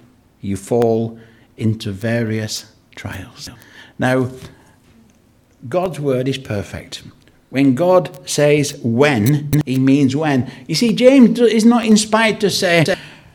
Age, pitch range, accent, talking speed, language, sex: 60-79, 130-190 Hz, British, 110 wpm, English, male